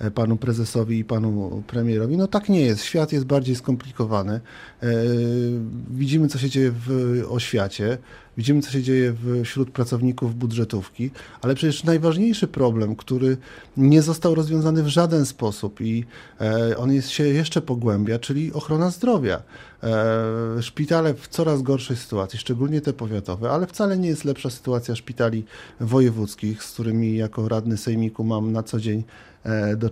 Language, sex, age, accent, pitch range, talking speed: Polish, male, 40-59, native, 115-145 Hz, 140 wpm